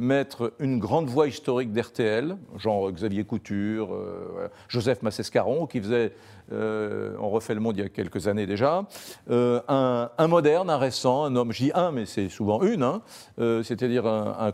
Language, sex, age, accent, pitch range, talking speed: French, male, 50-69, French, 115-150 Hz, 180 wpm